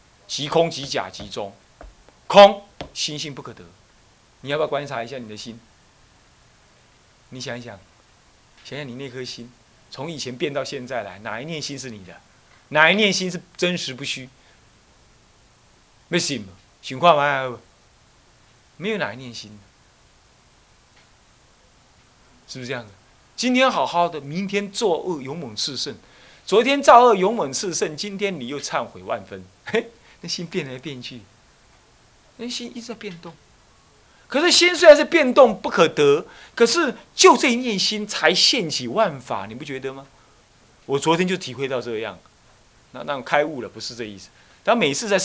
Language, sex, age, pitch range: Chinese, male, 30-49, 120-195 Hz